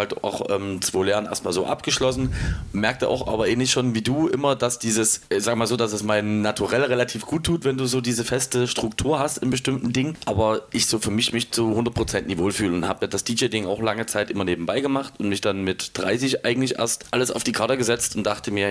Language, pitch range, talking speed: German, 105-130 Hz, 240 wpm